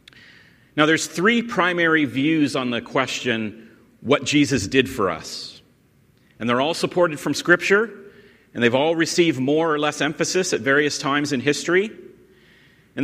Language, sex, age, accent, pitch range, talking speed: English, male, 40-59, American, 120-165 Hz, 150 wpm